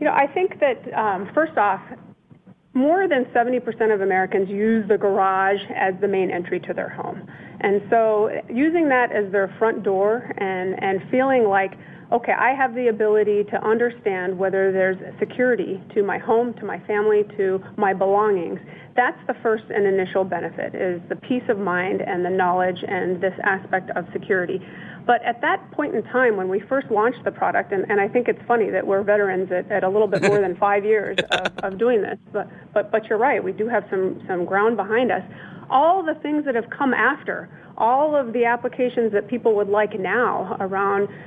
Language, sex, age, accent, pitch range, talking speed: English, female, 40-59, American, 195-235 Hz, 200 wpm